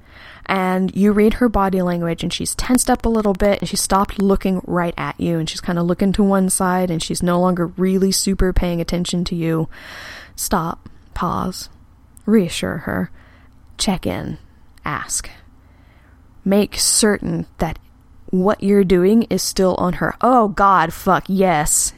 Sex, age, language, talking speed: female, 20-39, English, 160 wpm